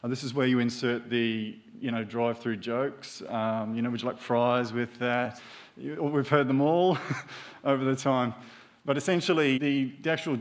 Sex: male